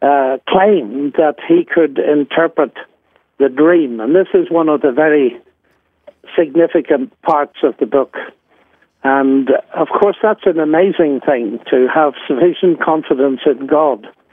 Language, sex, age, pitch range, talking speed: English, male, 60-79, 140-180 Hz, 140 wpm